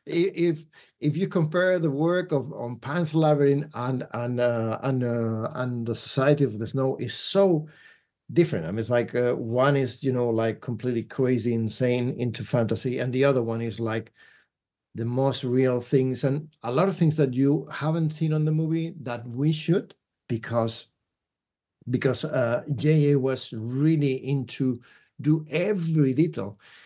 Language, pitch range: English, 125-160 Hz